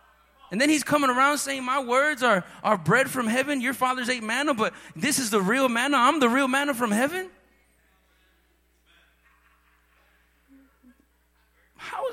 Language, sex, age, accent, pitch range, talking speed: English, male, 30-49, American, 175-270 Hz, 150 wpm